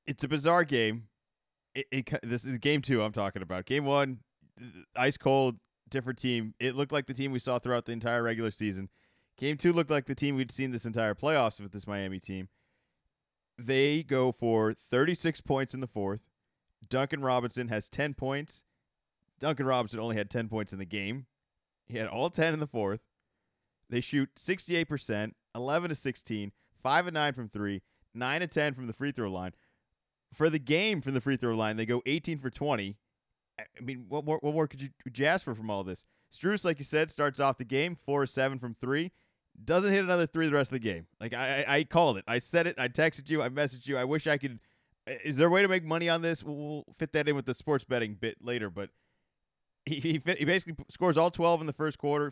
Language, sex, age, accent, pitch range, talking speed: English, male, 30-49, American, 115-150 Hz, 210 wpm